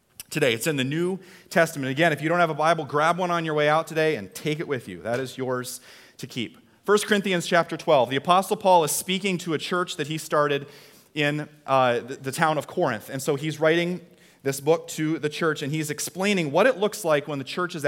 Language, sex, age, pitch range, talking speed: English, male, 30-49, 145-185 Hz, 240 wpm